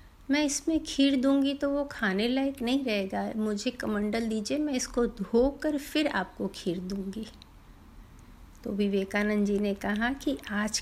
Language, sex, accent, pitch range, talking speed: Hindi, female, native, 200-245 Hz, 150 wpm